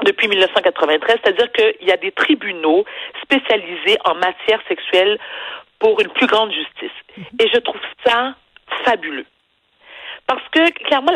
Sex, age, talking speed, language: female, 50-69, 135 wpm, French